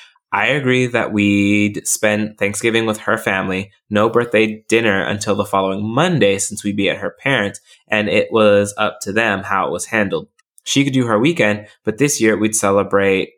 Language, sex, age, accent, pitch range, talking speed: English, male, 20-39, American, 100-115 Hz, 190 wpm